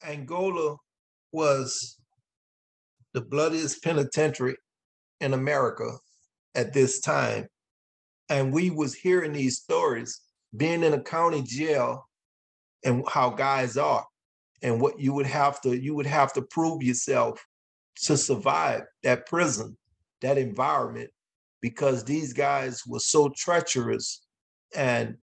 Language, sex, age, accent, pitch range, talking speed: English, male, 40-59, American, 120-150 Hz, 120 wpm